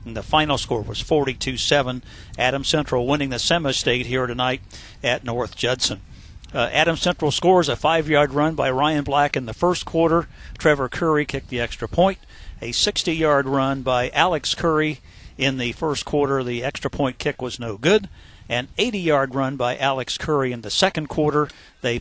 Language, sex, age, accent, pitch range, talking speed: English, male, 50-69, American, 125-155 Hz, 190 wpm